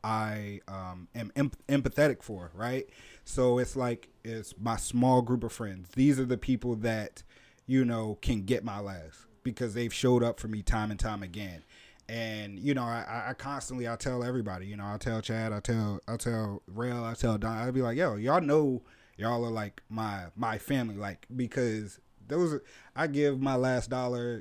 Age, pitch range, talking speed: 30-49, 105-130 Hz, 195 wpm